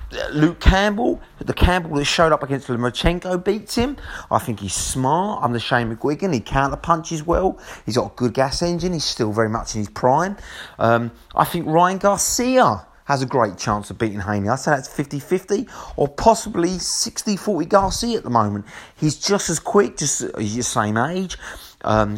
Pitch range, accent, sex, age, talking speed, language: 115-175 Hz, British, male, 30-49, 185 wpm, English